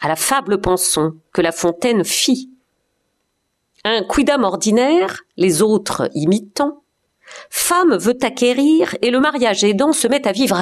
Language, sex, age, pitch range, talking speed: French, female, 50-69, 195-260 Hz, 140 wpm